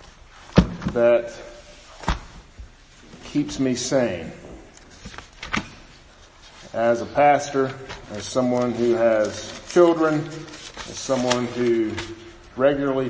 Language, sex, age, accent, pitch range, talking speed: English, male, 40-59, American, 115-150 Hz, 75 wpm